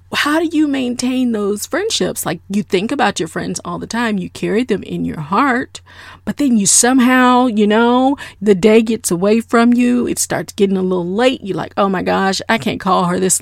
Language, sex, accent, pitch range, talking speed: English, female, American, 195-240 Hz, 220 wpm